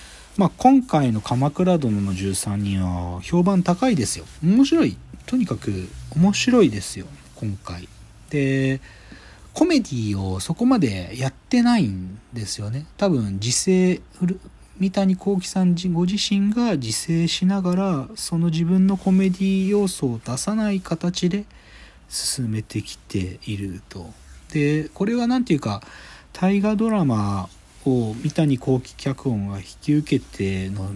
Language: Japanese